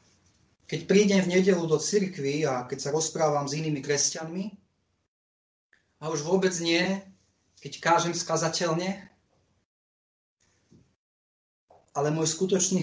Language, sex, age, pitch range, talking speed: Slovak, male, 30-49, 130-180 Hz, 110 wpm